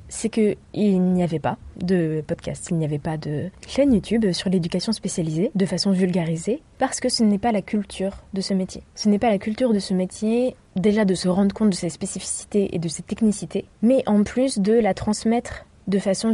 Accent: French